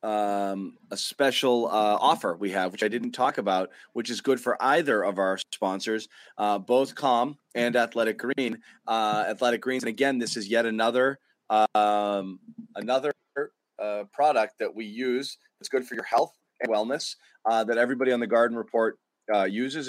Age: 30-49